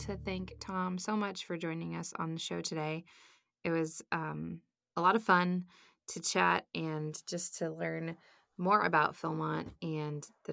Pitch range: 170-210 Hz